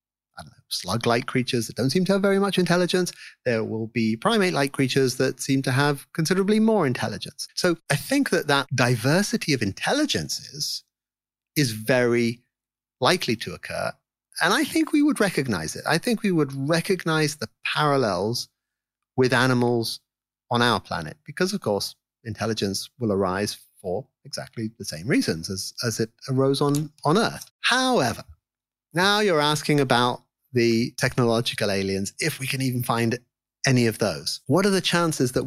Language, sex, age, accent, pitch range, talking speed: English, male, 30-49, British, 120-150 Hz, 155 wpm